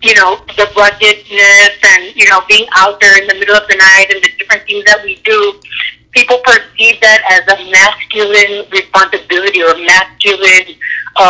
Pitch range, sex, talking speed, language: 195-235 Hz, female, 170 wpm, English